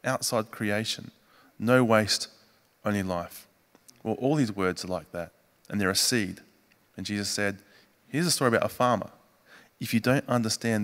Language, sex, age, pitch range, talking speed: English, male, 20-39, 100-120 Hz, 165 wpm